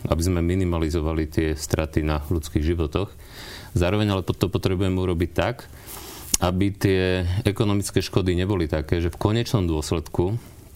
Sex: male